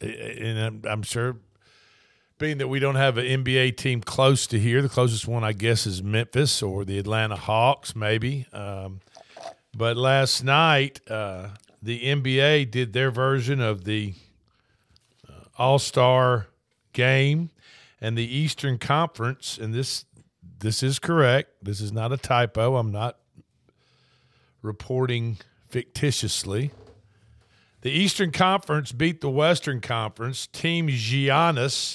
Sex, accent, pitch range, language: male, American, 110-140 Hz, English